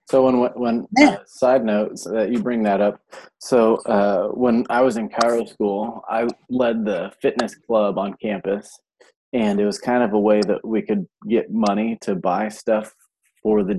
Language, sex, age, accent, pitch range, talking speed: English, male, 30-49, American, 105-130 Hz, 185 wpm